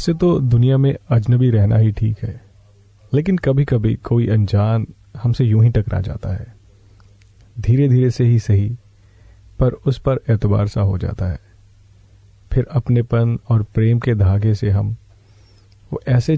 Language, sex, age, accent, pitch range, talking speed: Hindi, male, 40-59, native, 100-125 Hz, 160 wpm